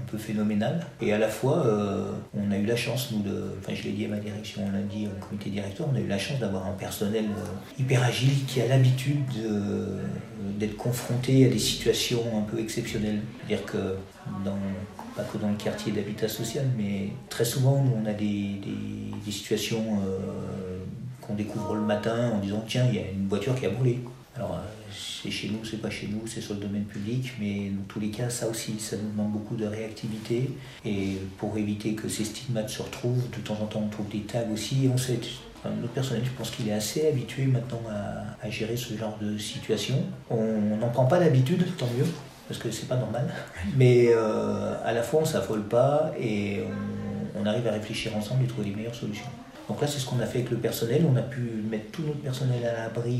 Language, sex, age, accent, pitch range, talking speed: French, male, 50-69, French, 105-130 Hz, 225 wpm